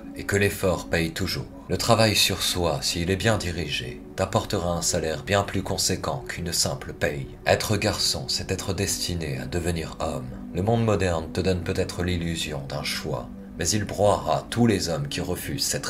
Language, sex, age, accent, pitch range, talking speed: French, male, 40-59, French, 80-100 Hz, 180 wpm